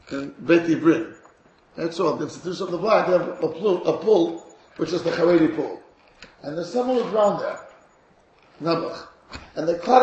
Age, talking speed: 50-69, 185 wpm